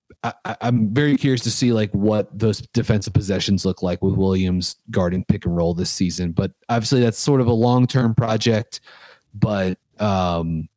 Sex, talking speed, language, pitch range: male, 165 wpm, English, 95-115 Hz